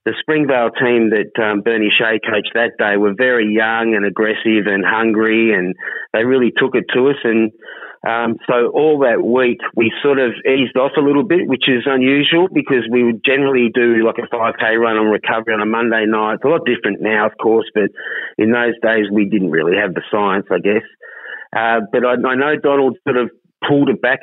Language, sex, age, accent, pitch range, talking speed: English, male, 30-49, Australian, 110-130 Hz, 215 wpm